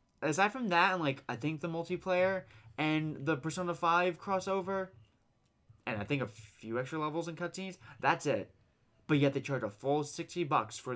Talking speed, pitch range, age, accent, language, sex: 185 wpm, 110-145 Hz, 20-39, American, English, male